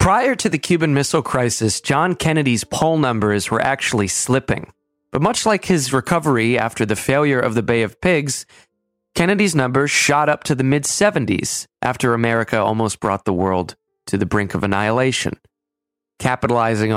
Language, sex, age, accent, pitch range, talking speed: English, male, 20-39, American, 100-135 Hz, 160 wpm